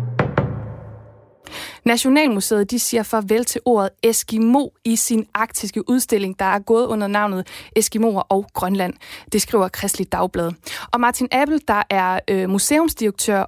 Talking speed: 130 wpm